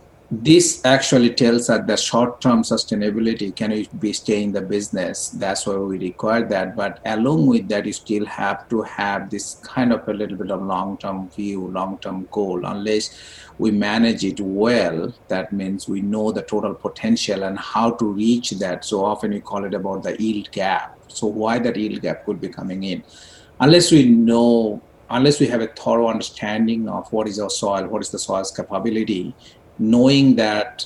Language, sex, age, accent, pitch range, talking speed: English, male, 50-69, Indian, 100-120 Hz, 195 wpm